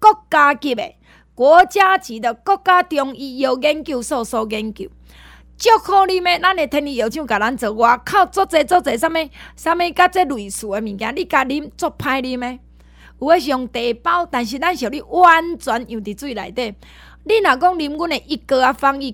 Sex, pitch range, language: female, 230-330 Hz, Chinese